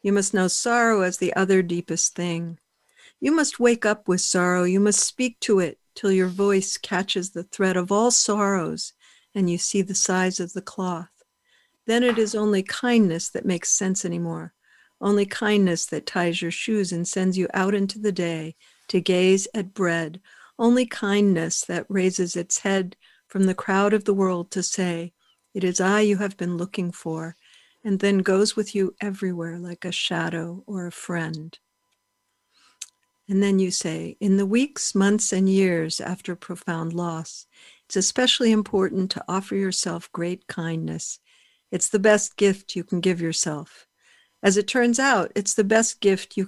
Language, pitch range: English, 175-205 Hz